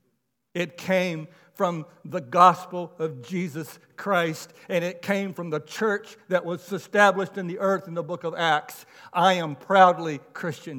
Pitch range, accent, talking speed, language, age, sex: 155-195 Hz, American, 160 wpm, English, 60-79, male